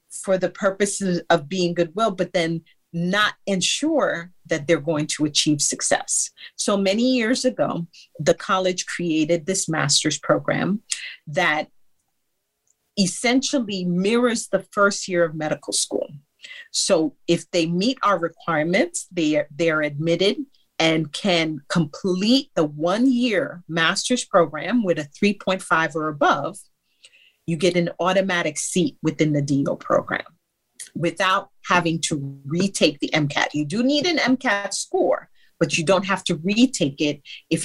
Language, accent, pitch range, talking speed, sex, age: English, American, 160-210 Hz, 140 wpm, female, 40-59